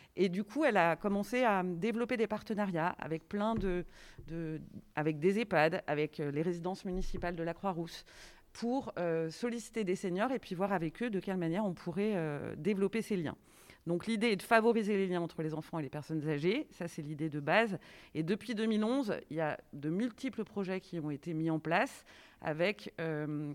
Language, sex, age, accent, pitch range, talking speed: French, female, 40-59, French, 165-210 Hz, 200 wpm